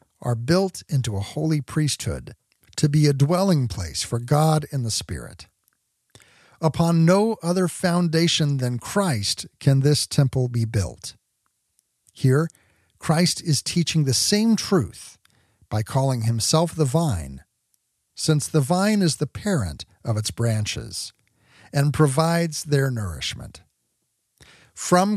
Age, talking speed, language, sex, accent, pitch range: 50-69, 125 wpm, English, male, American, 115-160 Hz